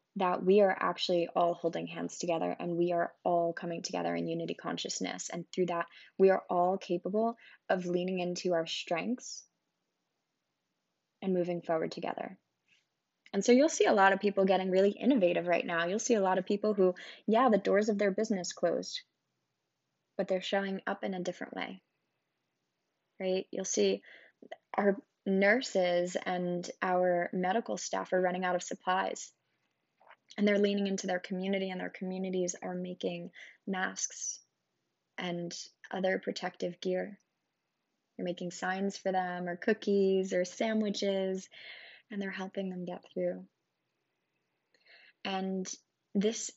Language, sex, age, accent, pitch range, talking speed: English, female, 20-39, American, 175-200 Hz, 150 wpm